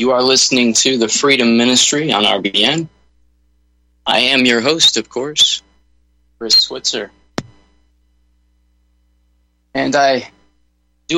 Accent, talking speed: American, 105 wpm